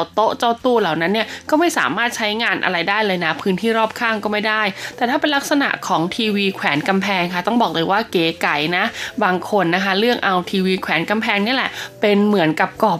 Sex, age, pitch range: female, 20-39, 195-245 Hz